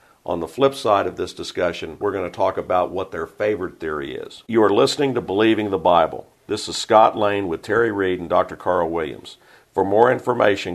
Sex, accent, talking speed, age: male, American, 210 wpm, 50-69